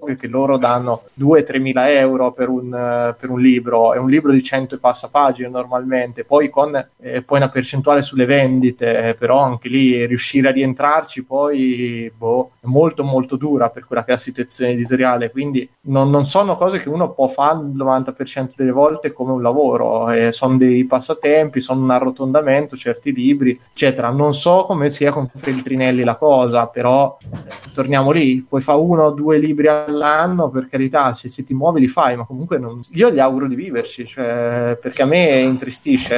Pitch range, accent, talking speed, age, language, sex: 130-150 Hz, native, 190 wpm, 20-39, Italian, male